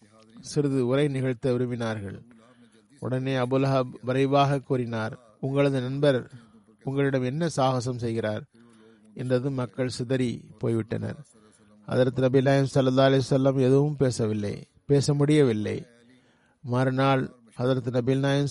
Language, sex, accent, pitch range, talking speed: Tamil, male, native, 120-135 Hz, 100 wpm